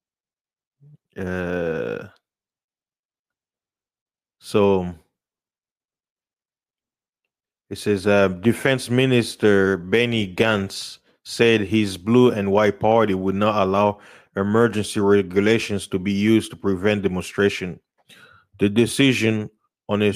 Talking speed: 90 wpm